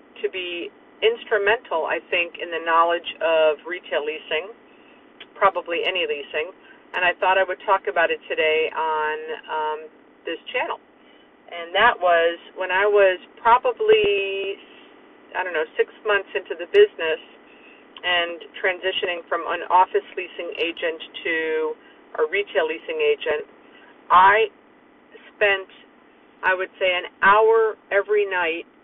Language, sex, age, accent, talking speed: English, female, 50-69, American, 130 wpm